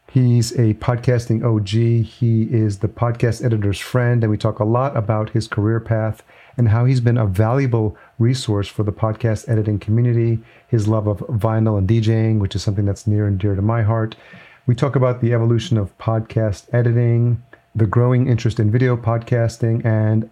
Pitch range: 105-120 Hz